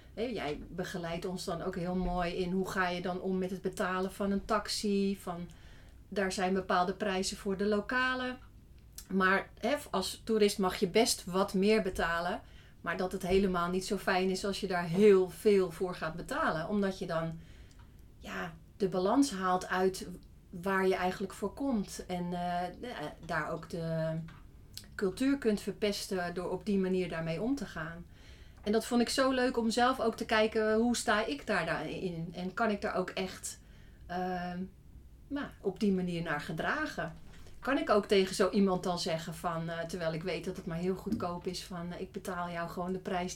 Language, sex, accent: Dutch, female, Dutch